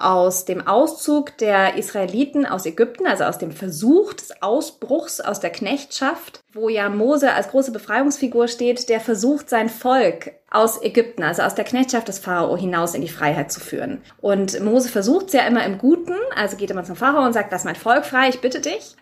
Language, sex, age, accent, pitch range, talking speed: German, female, 20-39, German, 210-265 Hz, 200 wpm